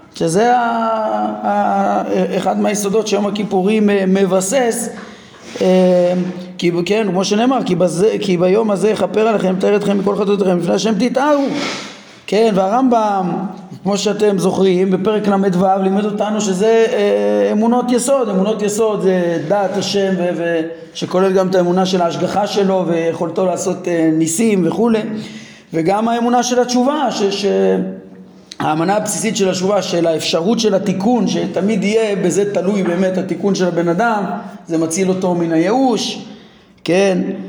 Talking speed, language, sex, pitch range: 140 wpm, Hebrew, male, 175-215 Hz